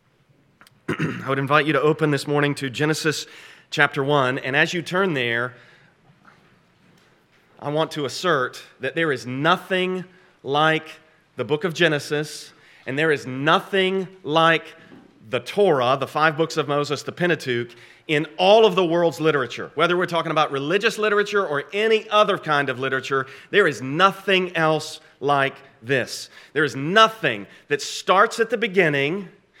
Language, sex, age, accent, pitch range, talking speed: English, male, 30-49, American, 145-205 Hz, 155 wpm